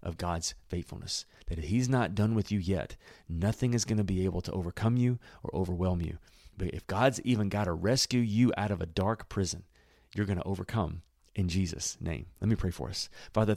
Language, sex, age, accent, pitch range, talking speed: English, male, 40-59, American, 90-115 Hz, 210 wpm